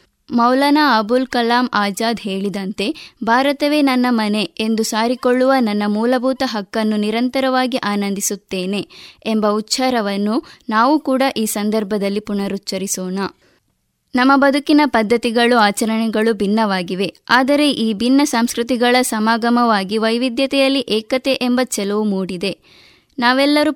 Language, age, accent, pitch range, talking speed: Kannada, 20-39, native, 210-260 Hz, 95 wpm